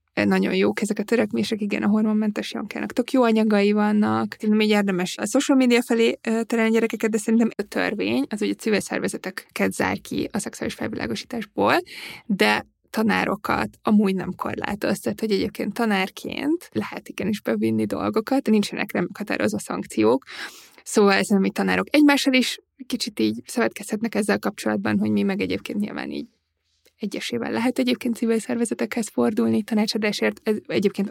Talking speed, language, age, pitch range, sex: 145 wpm, Hungarian, 20-39, 195-235 Hz, female